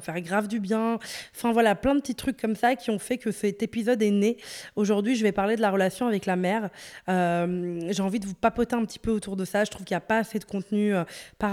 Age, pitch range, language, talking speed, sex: 20-39, 190-225 Hz, French, 280 wpm, female